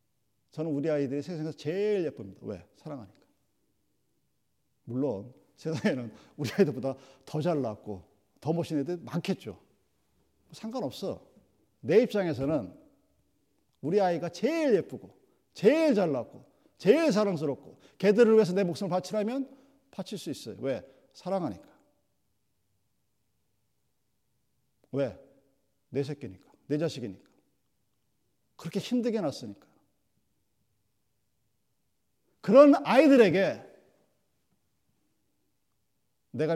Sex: male